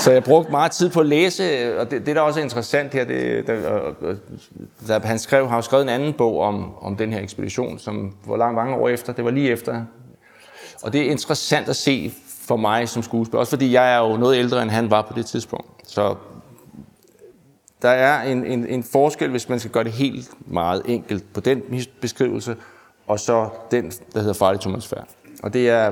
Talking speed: 220 wpm